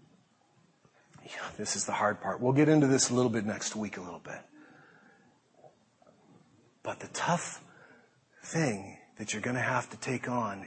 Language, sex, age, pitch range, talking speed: English, male, 40-59, 110-145 Hz, 165 wpm